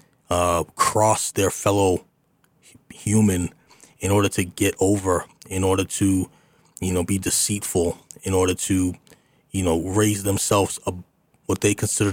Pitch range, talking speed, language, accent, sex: 90-105 Hz, 135 wpm, English, American, male